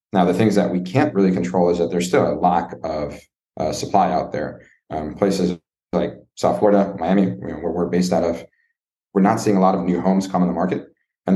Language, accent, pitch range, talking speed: English, American, 85-100 Hz, 240 wpm